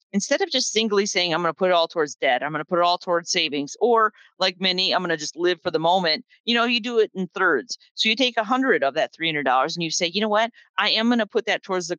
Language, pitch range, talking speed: English, 170-215 Hz, 305 wpm